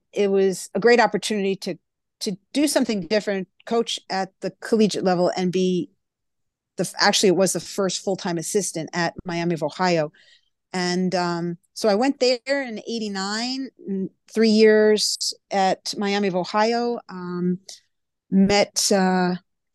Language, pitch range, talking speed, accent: English, 175-215 Hz, 140 wpm, American